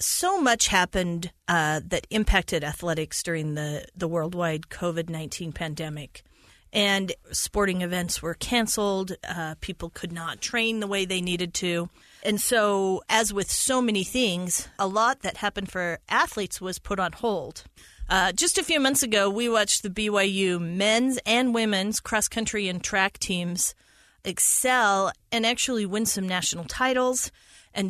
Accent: American